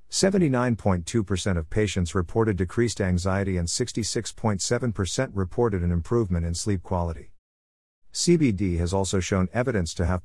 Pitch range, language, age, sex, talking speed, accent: 85-120 Hz, English, 50-69, male, 115 wpm, American